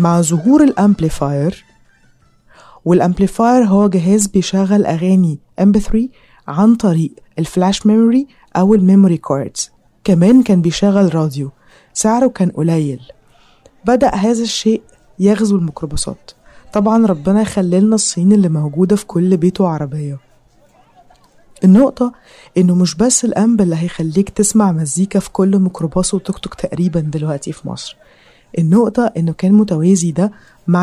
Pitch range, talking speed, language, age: 160-205 Hz, 120 wpm, Arabic, 20-39